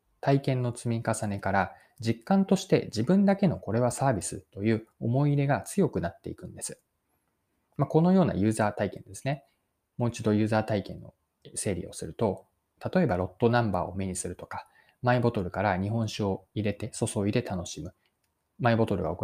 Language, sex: Japanese, male